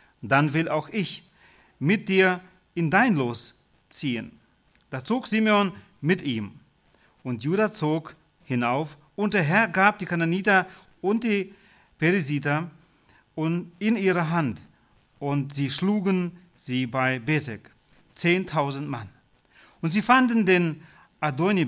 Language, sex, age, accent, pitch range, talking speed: Russian, male, 40-59, German, 145-185 Hz, 120 wpm